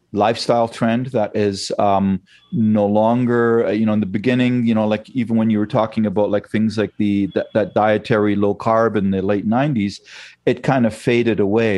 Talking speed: 200 wpm